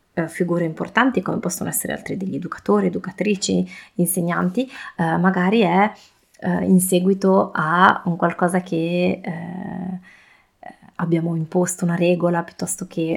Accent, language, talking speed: native, Italian, 125 wpm